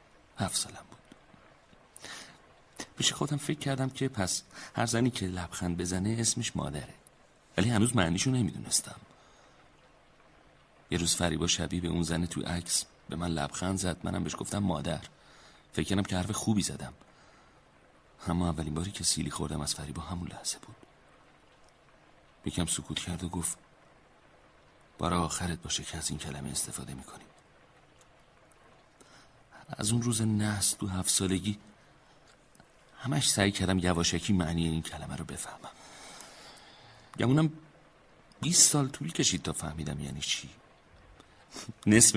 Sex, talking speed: male, 135 wpm